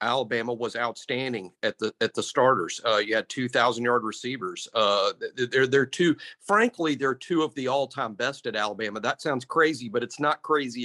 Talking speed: 200 wpm